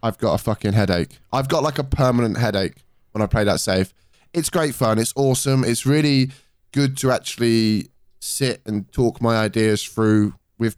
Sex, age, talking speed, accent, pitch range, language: male, 10-29, 185 wpm, British, 105-130 Hz, English